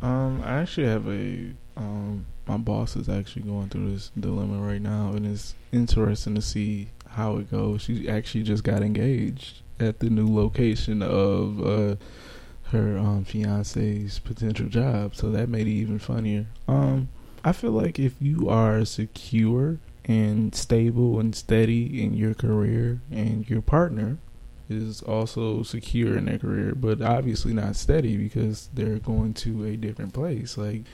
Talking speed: 160 wpm